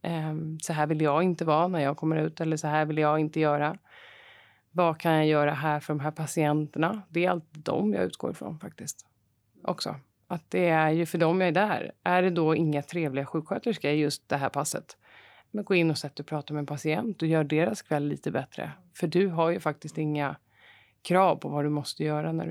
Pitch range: 150-175 Hz